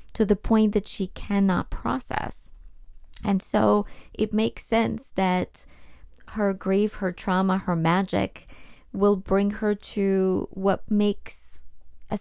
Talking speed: 130 wpm